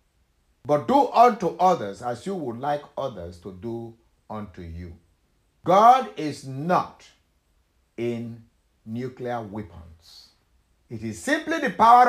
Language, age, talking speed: English, 60-79, 120 wpm